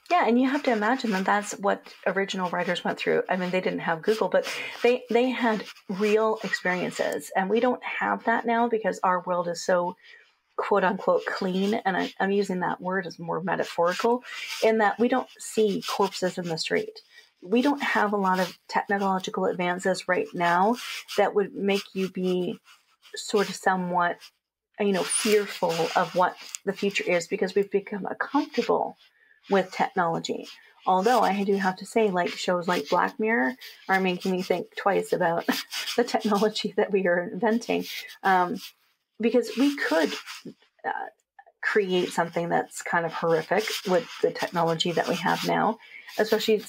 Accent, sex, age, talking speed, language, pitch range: American, female, 40-59, 170 wpm, English, 180-230 Hz